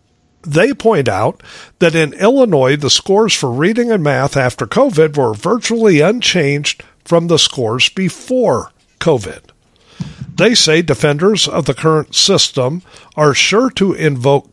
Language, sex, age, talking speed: English, male, 50-69, 135 wpm